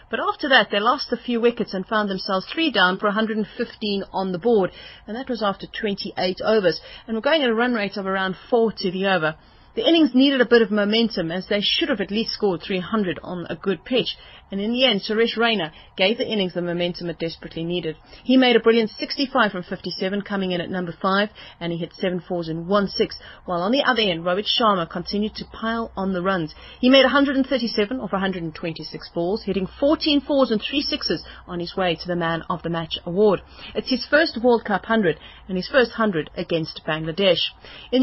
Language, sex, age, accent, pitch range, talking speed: English, female, 30-49, British, 175-230 Hz, 220 wpm